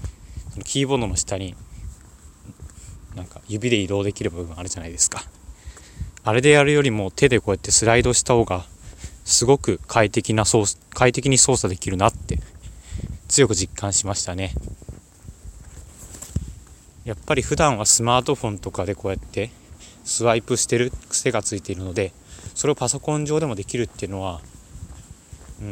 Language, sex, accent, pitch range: Japanese, male, native, 90-115 Hz